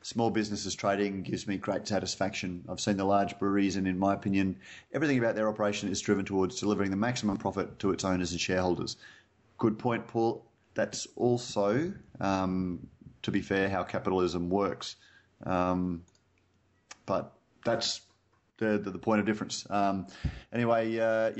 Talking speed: 160 wpm